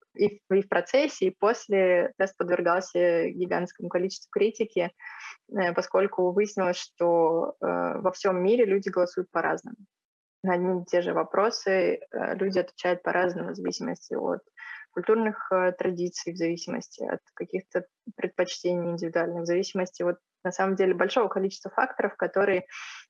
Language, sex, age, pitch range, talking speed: Russian, female, 20-39, 180-200 Hz, 125 wpm